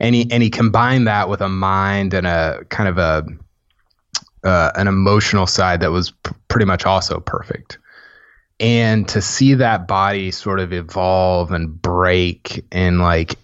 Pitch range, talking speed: 90-110 Hz, 160 wpm